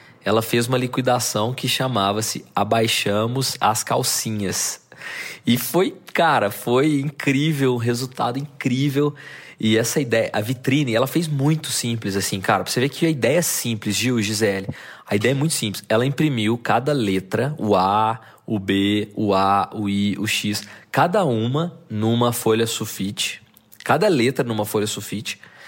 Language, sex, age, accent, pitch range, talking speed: Portuguese, male, 20-39, Brazilian, 105-125 Hz, 155 wpm